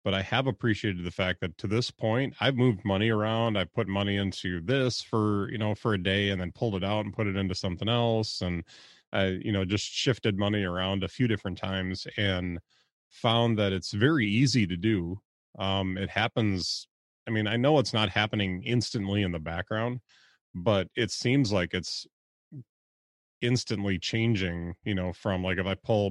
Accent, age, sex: American, 30-49, male